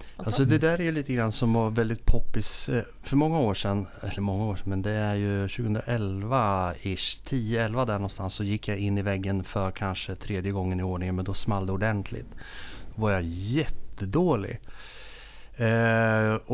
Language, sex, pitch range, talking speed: Swedish, male, 100-130 Hz, 170 wpm